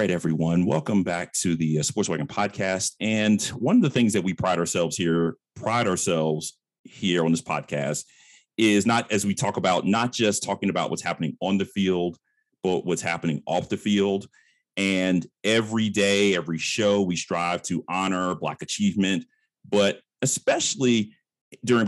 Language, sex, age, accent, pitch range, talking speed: English, male, 40-59, American, 90-110 Hz, 170 wpm